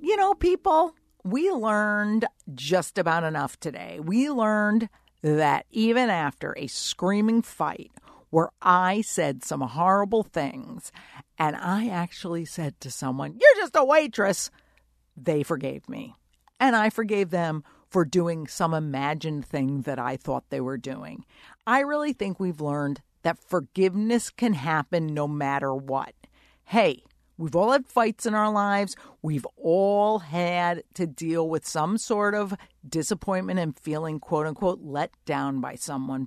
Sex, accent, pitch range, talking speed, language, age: female, American, 145-210 Hz, 145 wpm, English, 50-69